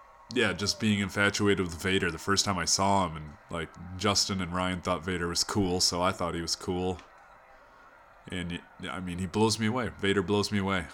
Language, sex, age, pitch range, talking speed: English, male, 20-39, 90-105 Hz, 215 wpm